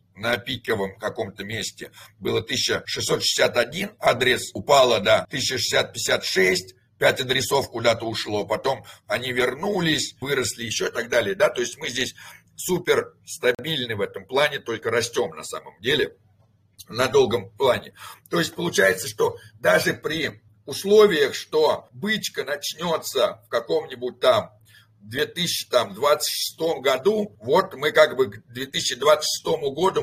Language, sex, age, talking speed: Russian, male, 60-79, 130 wpm